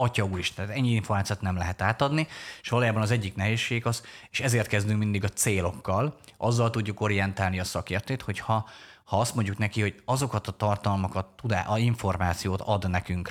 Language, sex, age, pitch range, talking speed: Hungarian, male, 30-49, 95-120 Hz, 175 wpm